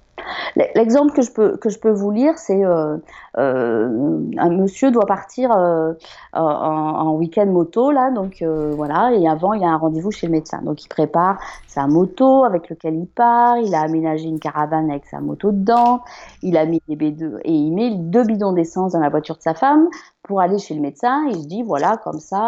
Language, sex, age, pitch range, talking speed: French, female, 30-49, 160-235 Hz, 215 wpm